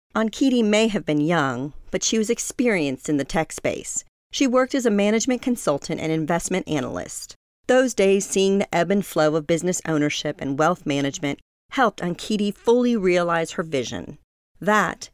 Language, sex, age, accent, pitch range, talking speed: English, female, 40-59, American, 155-220 Hz, 165 wpm